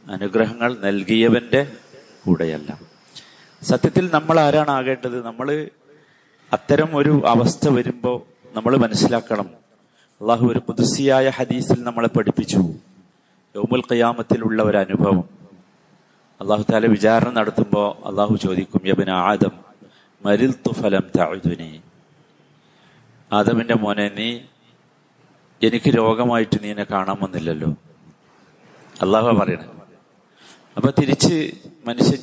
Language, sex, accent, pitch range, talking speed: Malayalam, male, native, 100-130 Hz, 90 wpm